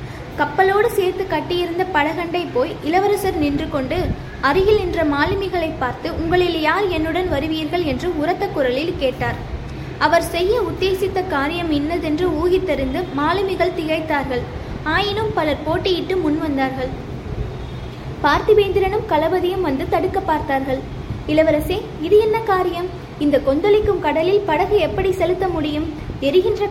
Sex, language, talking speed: female, Tamil, 115 wpm